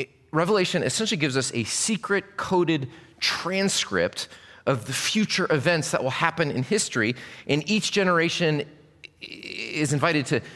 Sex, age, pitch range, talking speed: male, 30-49, 120-175 Hz, 130 wpm